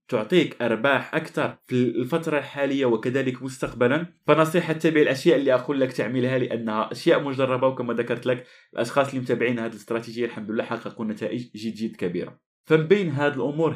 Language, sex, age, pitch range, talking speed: Arabic, male, 20-39, 120-150 Hz, 160 wpm